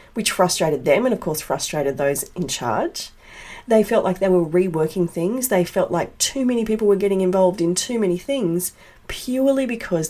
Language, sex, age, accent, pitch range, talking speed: English, female, 40-59, Australian, 160-210 Hz, 190 wpm